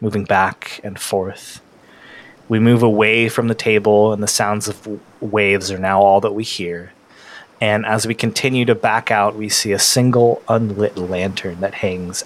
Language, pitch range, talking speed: English, 95-115 Hz, 175 wpm